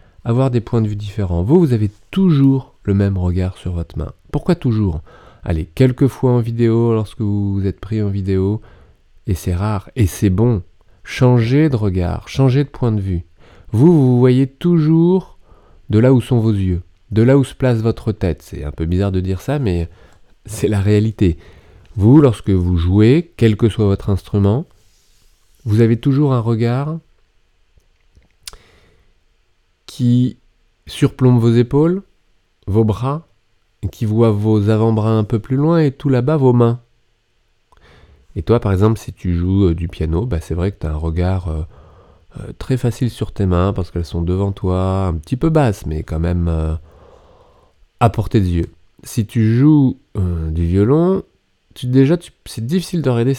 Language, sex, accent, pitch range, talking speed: French, male, French, 90-120 Hz, 180 wpm